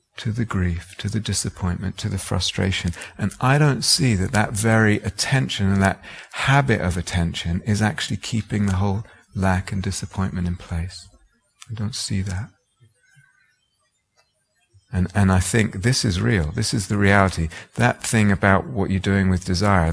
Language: English